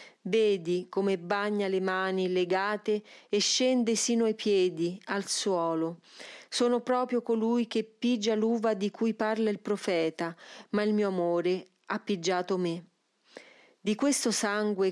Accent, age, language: native, 40-59, Italian